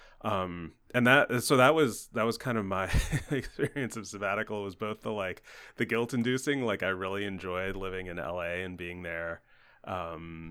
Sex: male